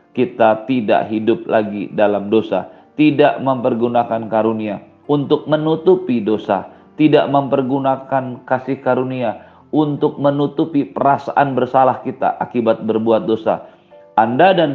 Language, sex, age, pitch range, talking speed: Indonesian, male, 40-59, 110-140 Hz, 105 wpm